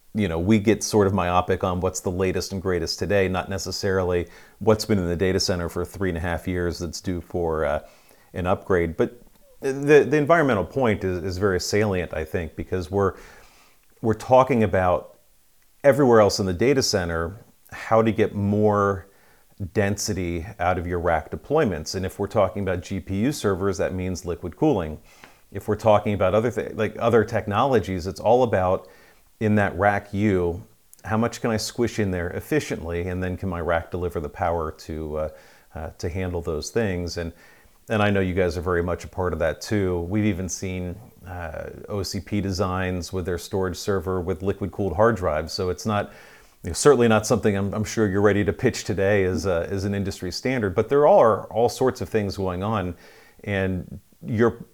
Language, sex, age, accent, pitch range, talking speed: English, male, 40-59, American, 90-105 Hz, 195 wpm